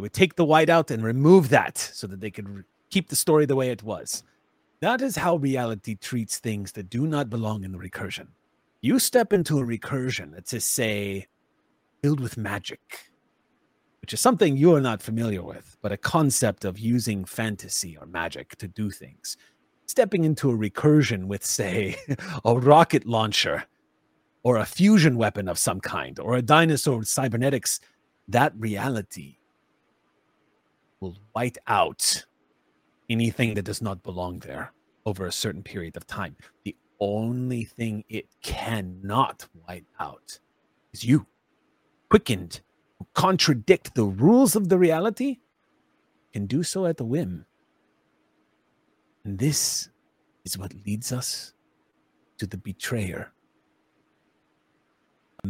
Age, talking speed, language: 30-49, 145 wpm, English